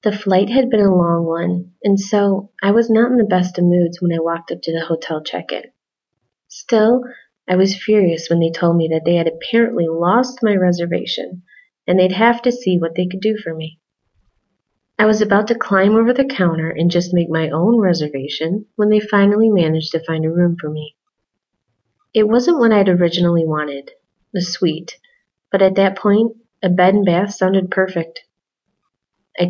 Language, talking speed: English, 190 wpm